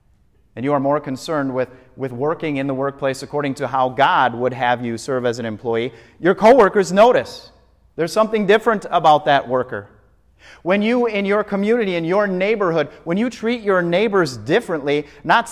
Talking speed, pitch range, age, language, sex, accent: 180 wpm, 120-175 Hz, 30-49, English, male, American